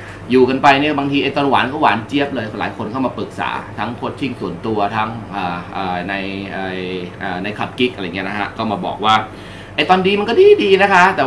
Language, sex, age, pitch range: Thai, male, 20-39, 100-140 Hz